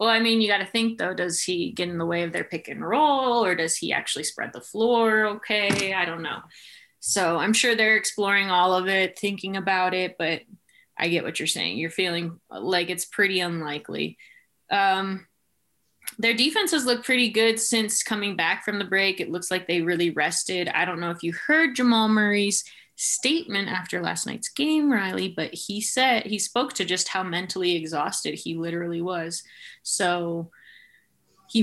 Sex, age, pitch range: female, 20-39, 175-220 Hz